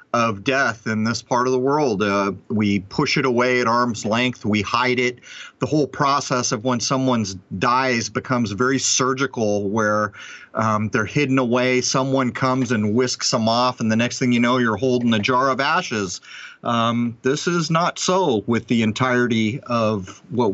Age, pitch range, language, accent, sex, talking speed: 40-59, 110-135 Hz, English, American, male, 180 wpm